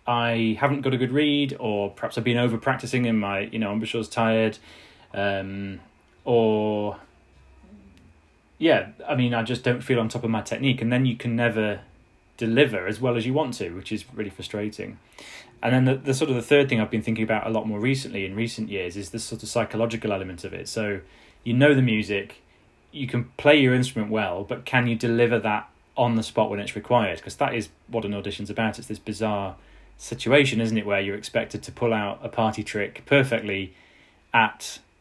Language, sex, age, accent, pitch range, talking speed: English, male, 20-39, British, 105-120 Hz, 215 wpm